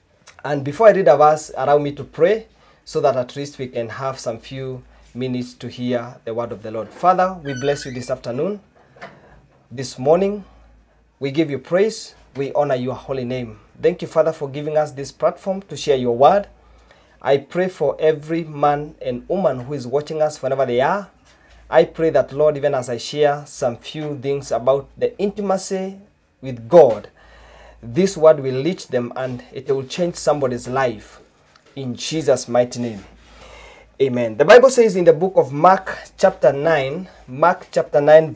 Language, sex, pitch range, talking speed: English, male, 130-190 Hz, 180 wpm